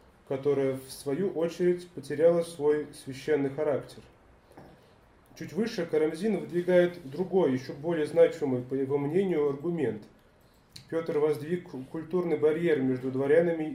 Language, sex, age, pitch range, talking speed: Russian, male, 30-49, 135-170 Hz, 115 wpm